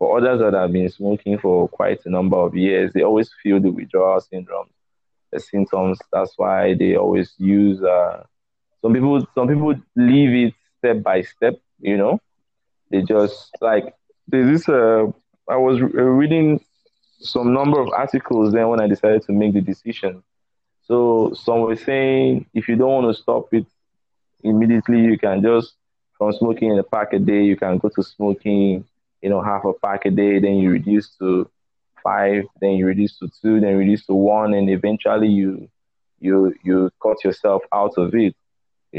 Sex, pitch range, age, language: male, 95-115 Hz, 20-39, English